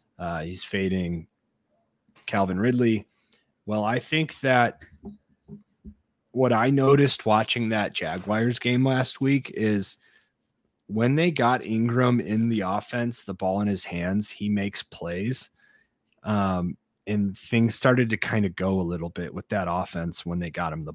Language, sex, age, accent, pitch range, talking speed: English, male, 30-49, American, 90-110 Hz, 150 wpm